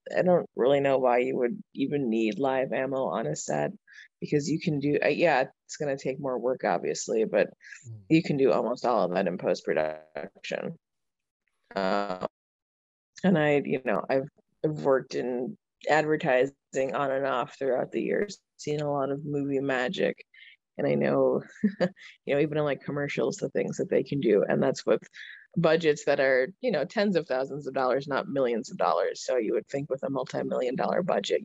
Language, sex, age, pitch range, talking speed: English, female, 20-39, 130-170 Hz, 185 wpm